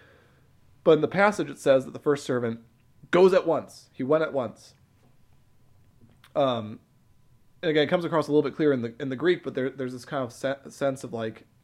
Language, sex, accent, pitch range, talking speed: English, male, American, 115-140 Hz, 215 wpm